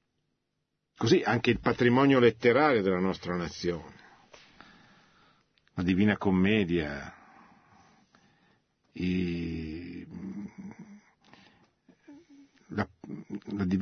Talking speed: 55 wpm